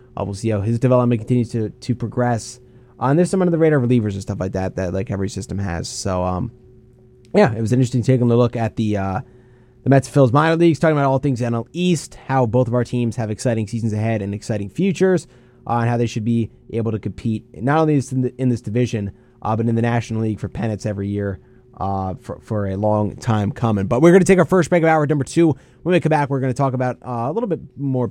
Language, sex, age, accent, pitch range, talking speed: English, male, 30-49, American, 110-130 Hz, 255 wpm